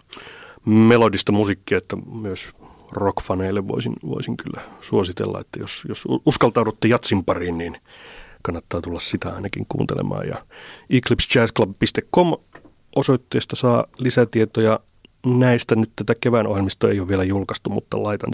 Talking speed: 120 wpm